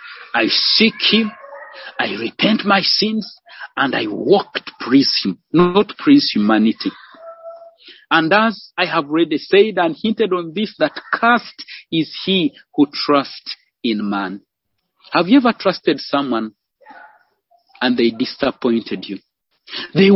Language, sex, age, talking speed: English, male, 50-69, 130 wpm